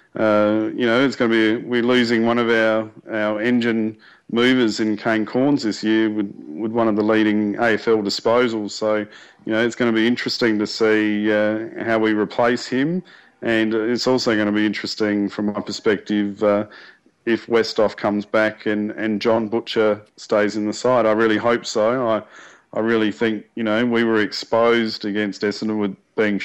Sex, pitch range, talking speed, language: male, 100-115 Hz, 190 wpm, English